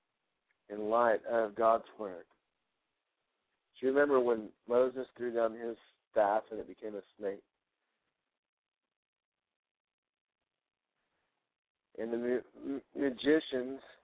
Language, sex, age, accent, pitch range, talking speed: English, male, 60-79, American, 110-125 Hz, 95 wpm